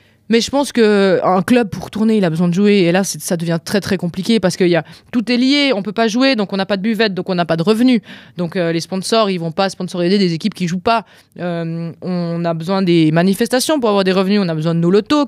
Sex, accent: female, French